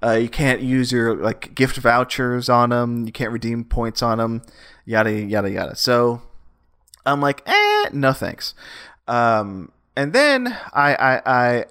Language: English